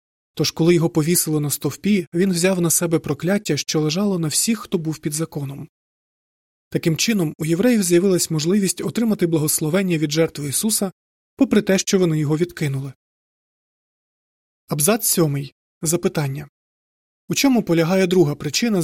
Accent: native